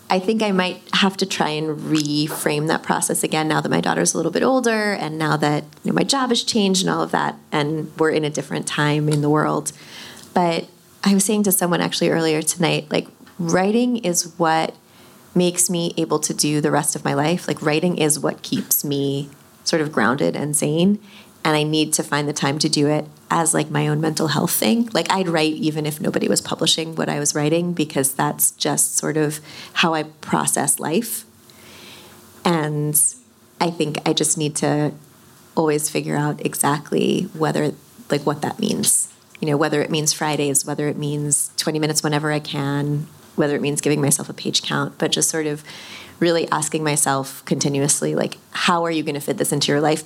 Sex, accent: female, American